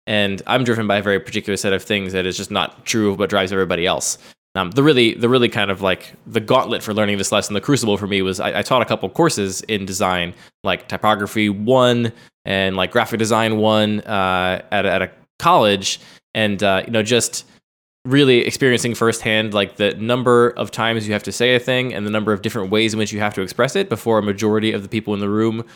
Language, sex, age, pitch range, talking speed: English, male, 20-39, 100-120 Hz, 235 wpm